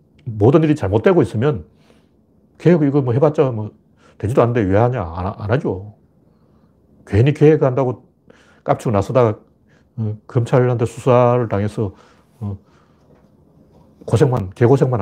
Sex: male